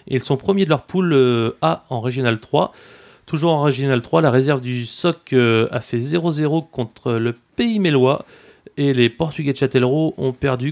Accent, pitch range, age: French, 125-165 Hz, 30-49